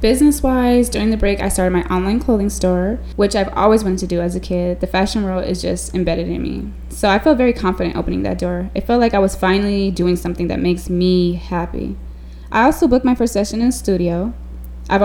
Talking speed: 225 wpm